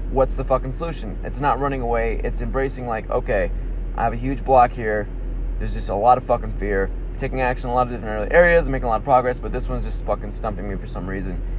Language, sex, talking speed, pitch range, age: English, male, 260 wpm, 95-130 Hz, 20-39